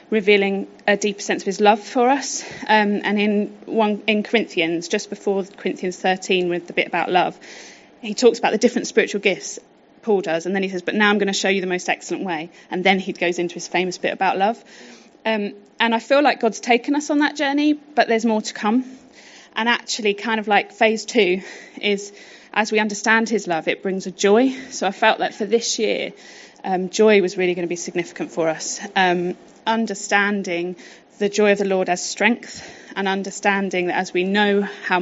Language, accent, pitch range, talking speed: English, British, 195-240 Hz, 210 wpm